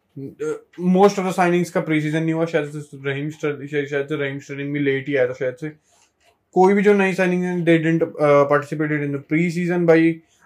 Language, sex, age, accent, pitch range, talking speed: Hindi, male, 20-39, native, 145-185 Hz, 130 wpm